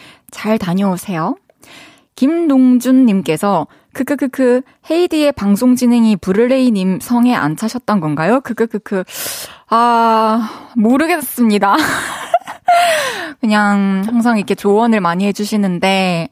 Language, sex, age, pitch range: Korean, female, 20-39, 200-285 Hz